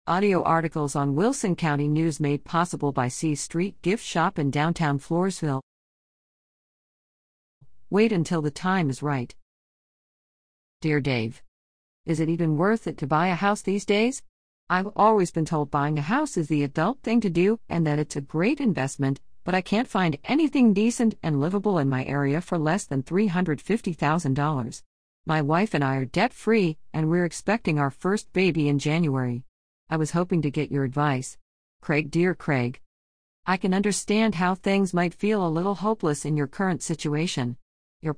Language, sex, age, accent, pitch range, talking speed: English, female, 50-69, American, 145-190 Hz, 170 wpm